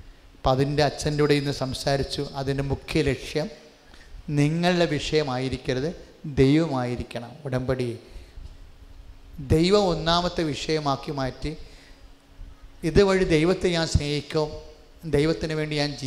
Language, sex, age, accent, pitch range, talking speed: English, male, 30-49, Indian, 125-155 Hz, 80 wpm